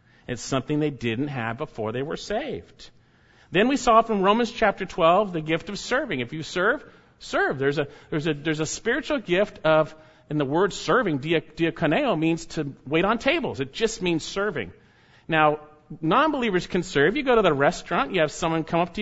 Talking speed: 195 wpm